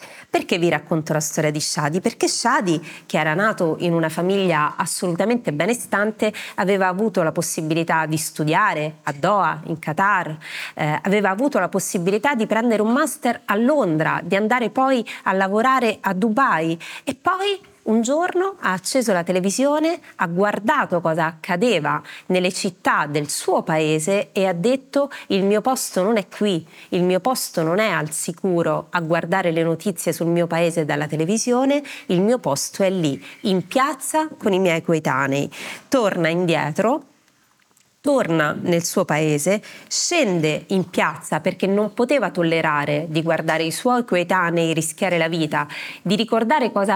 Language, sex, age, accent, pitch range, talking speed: Italian, female, 30-49, native, 160-225 Hz, 155 wpm